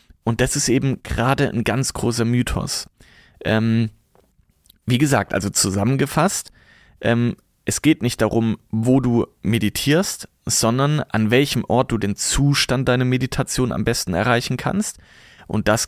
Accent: German